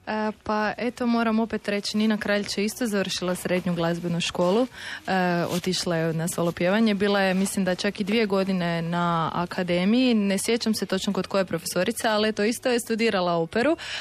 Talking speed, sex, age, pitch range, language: 180 wpm, female, 20-39, 180-215 Hz, Croatian